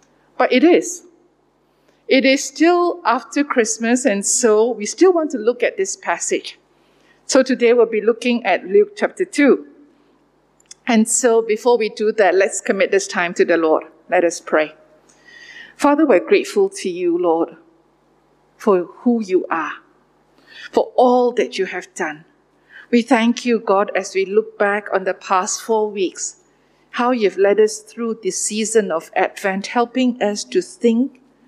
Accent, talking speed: Malaysian, 160 wpm